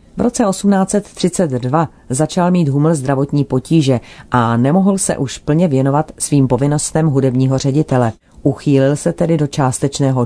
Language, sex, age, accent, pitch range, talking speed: Czech, female, 40-59, native, 130-160 Hz, 135 wpm